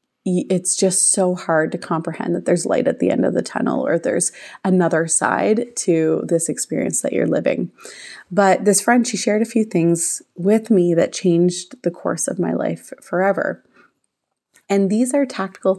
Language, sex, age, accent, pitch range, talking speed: English, female, 30-49, American, 175-225 Hz, 180 wpm